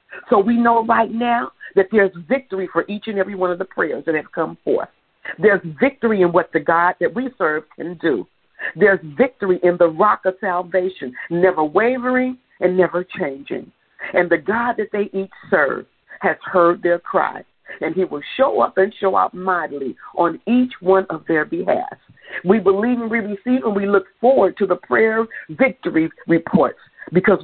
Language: English